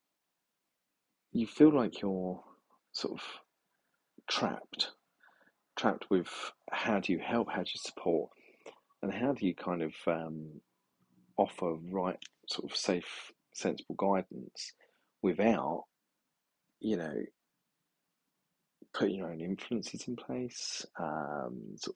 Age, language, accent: 40-59, English, British